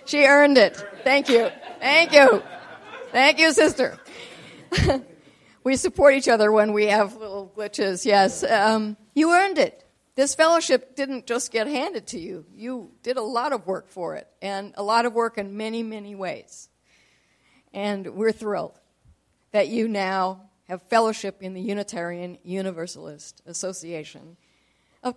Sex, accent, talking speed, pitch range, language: female, American, 150 wpm, 200-275 Hz, English